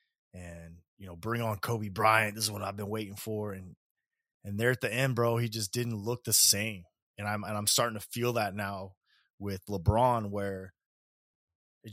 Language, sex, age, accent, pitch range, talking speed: English, male, 20-39, American, 105-130 Hz, 200 wpm